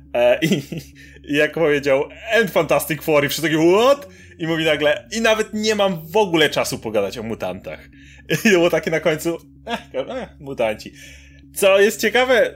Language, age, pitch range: Polish, 30-49, 130-175 Hz